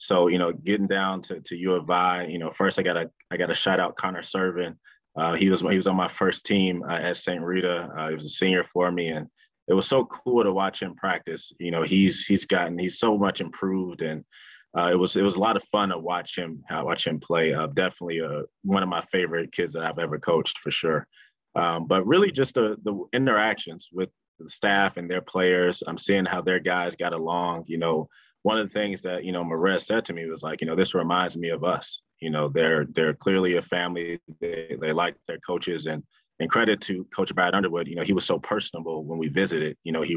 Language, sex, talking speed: English, male, 250 wpm